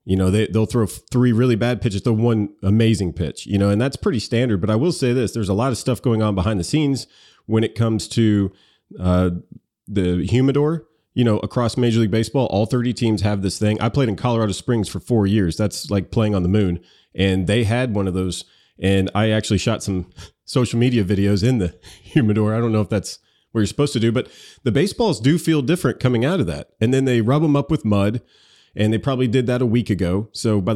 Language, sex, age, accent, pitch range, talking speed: English, male, 30-49, American, 100-125 Hz, 235 wpm